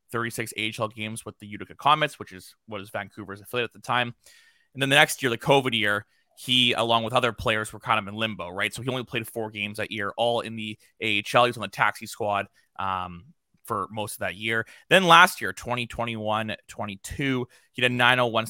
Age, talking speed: 20-39, 215 wpm